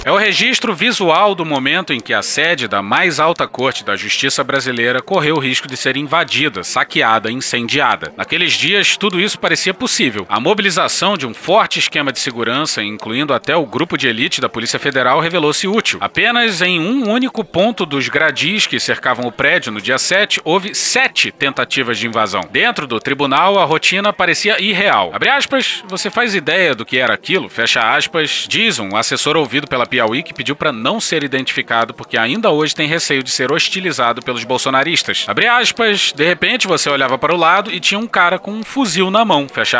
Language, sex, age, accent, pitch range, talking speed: Portuguese, male, 40-59, Brazilian, 140-205 Hz, 195 wpm